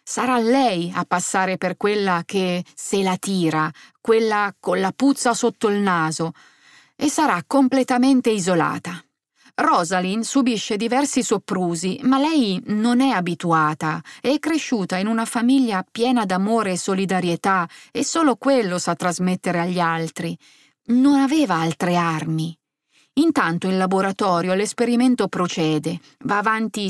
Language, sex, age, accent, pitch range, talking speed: Italian, female, 30-49, native, 180-235 Hz, 125 wpm